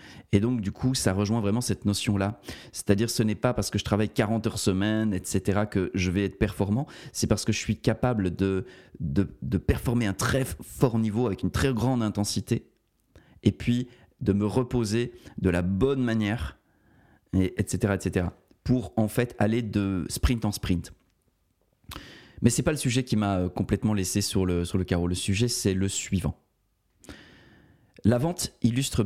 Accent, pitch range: French, 95-115 Hz